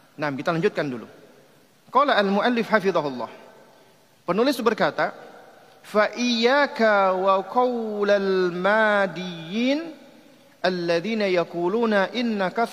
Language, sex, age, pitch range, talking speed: Indonesian, male, 40-59, 160-225 Hz, 60 wpm